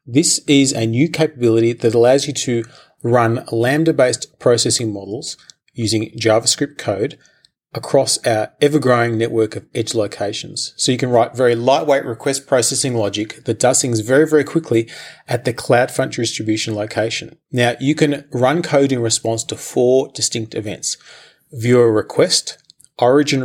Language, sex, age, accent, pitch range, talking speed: English, male, 30-49, Australian, 115-140 Hz, 145 wpm